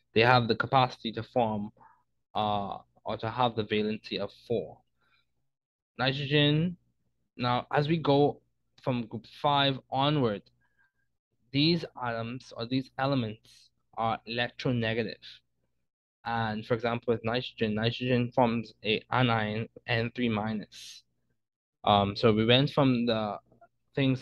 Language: English